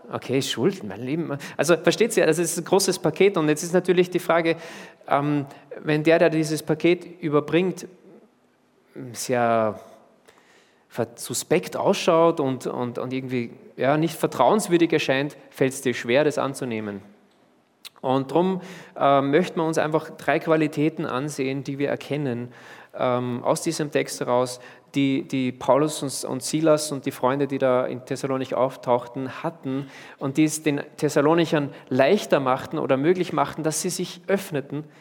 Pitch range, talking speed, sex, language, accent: 130-165 Hz, 145 wpm, male, German, German